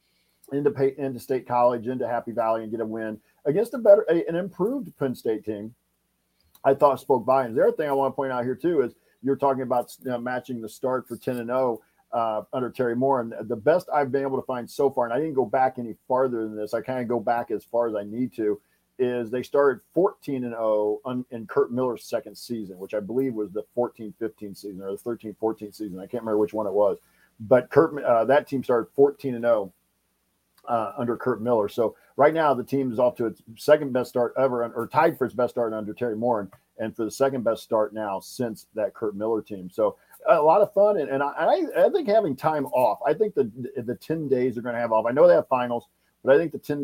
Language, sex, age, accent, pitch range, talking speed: English, male, 50-69, American, 110-135 Hz, 250 wpm